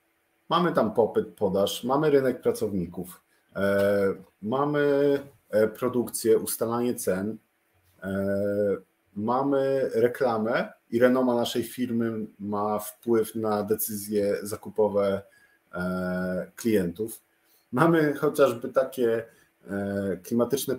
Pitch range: 100-120 Hz